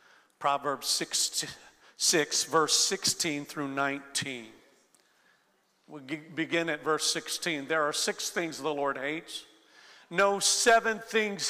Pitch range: 145-190 Hz